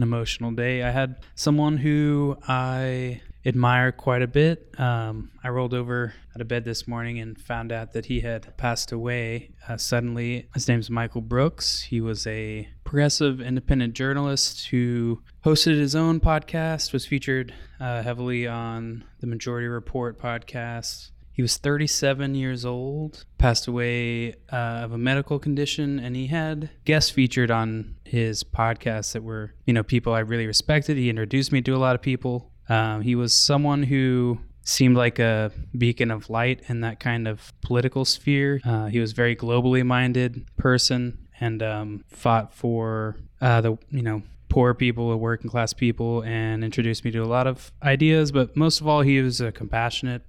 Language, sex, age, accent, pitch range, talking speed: English, male, 20-39, American, 115-130 Hz, 175 wpm